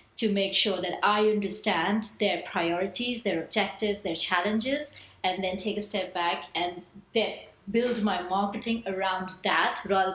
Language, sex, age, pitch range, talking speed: English, female, 30-49, 190-225 Hz, 155 wpm